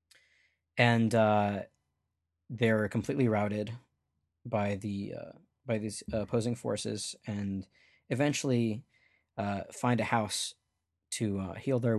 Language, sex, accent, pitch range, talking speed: English, male, American, 90-110 Hz, 110 wpm